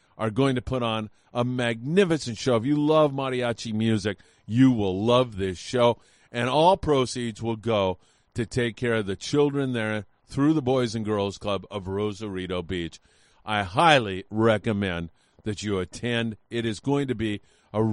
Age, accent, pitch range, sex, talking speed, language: 40-59, American, 105-135 Hz, male, 170 wpm, English